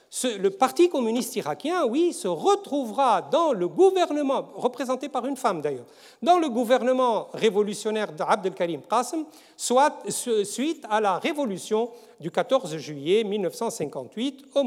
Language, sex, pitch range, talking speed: French, male, 190-275 Hz, 125 wpm